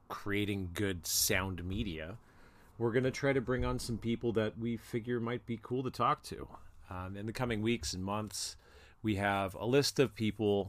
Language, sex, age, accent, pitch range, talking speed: English, male, 30-49, American, 90-110 Hz, 195 wpm